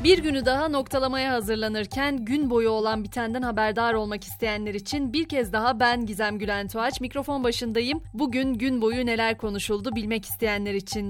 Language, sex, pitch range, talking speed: Turkish, female, 205-250 Hz, 160 wpm